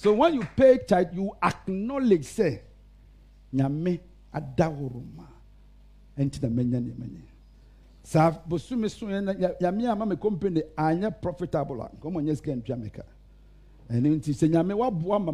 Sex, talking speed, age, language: male, 140 wpm, 60-79, English